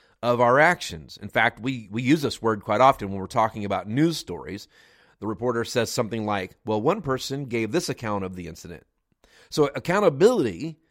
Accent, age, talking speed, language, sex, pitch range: American, 40-59, 185 wpm, English, male, 110-155 Hz